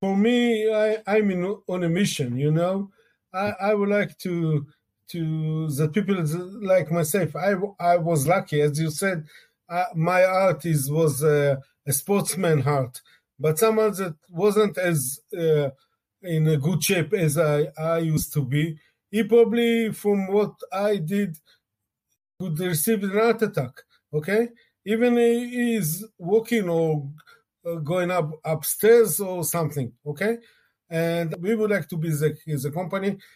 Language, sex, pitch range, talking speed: English, male, 160-205 Hz, 150 wpm